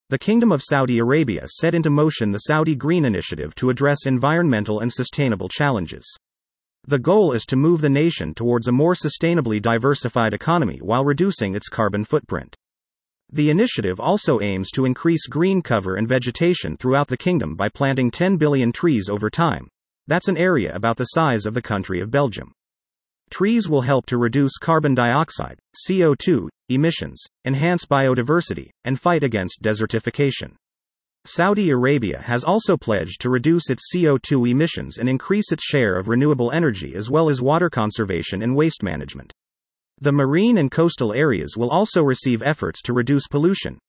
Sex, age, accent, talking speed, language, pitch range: male, 40-59, American, 160 wpm, English, 115-160 Hz